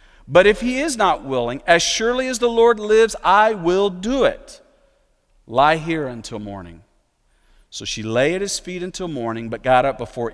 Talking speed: 185 wpm